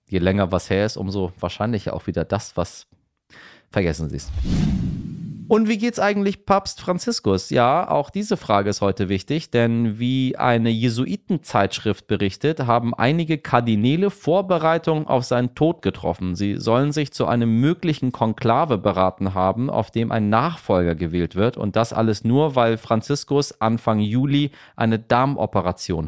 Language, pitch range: German, 105-145 Hz